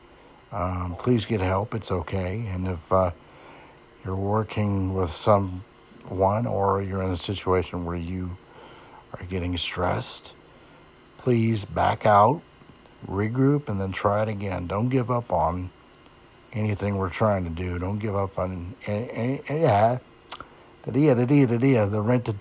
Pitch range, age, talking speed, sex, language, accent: 90-115 Hz, 60-79, 150 wpm, male, English, American